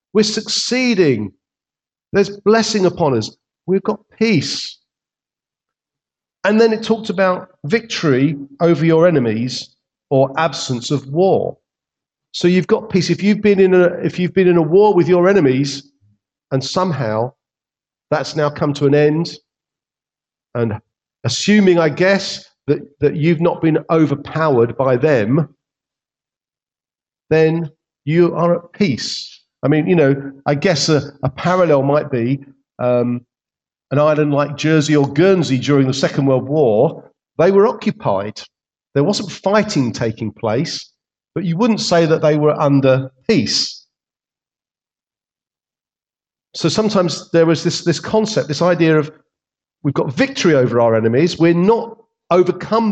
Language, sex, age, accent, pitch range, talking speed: English, male, 50-69, British, 140-185 Hz, 140 wpm